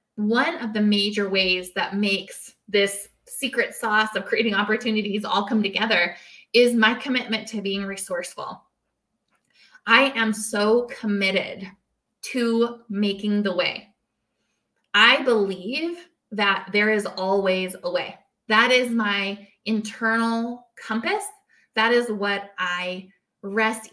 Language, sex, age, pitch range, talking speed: English, female, 20-39, 195-235 Hz, 120 wpm